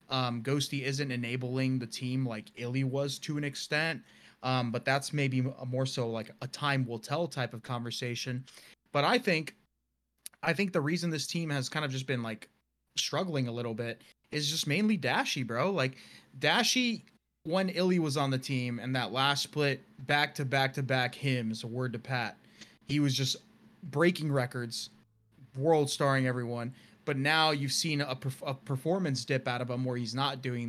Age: 20-39